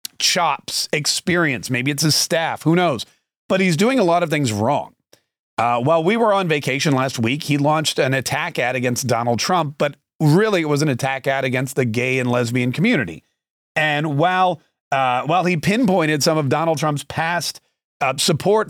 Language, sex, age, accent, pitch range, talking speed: English, male, 40-59, American, 130-170 Hz, 185 wpm